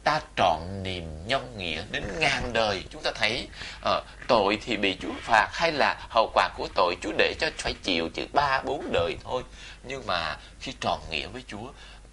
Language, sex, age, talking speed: Vietnamese, male, 20-39, 200 wpm